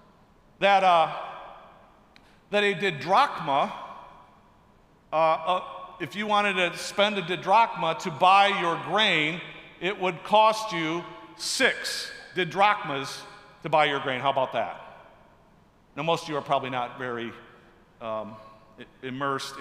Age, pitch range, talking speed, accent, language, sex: 50-69, 145-210 Hz, 125 wpm, American, English, male